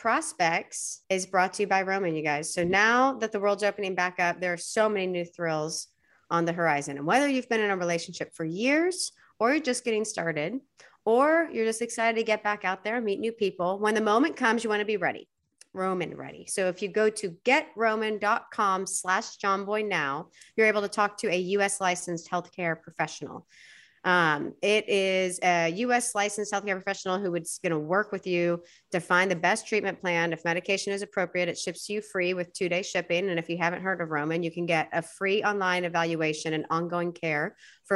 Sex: female